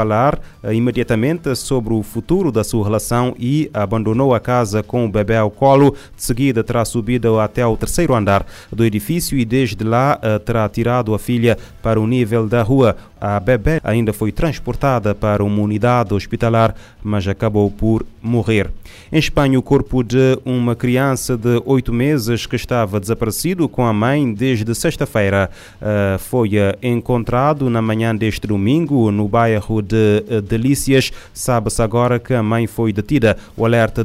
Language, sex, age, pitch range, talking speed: Portuguese, male, 30-49, 105-125 Hz, 160 wpm